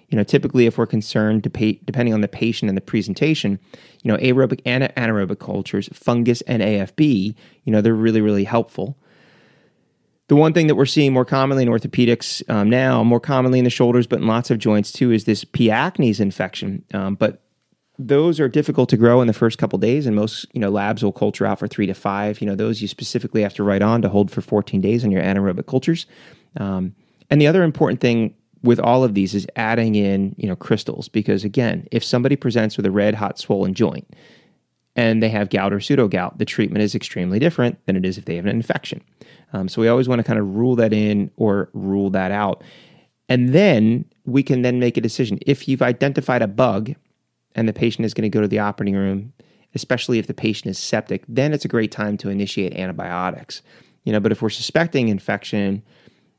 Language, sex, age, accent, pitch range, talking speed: English, male, 30-49, American, 105-130 Hz, 215 wpm